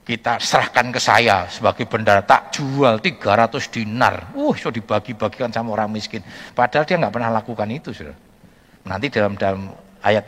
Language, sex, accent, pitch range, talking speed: Indonesian, male, native, 105-155 Hz, 150 wpm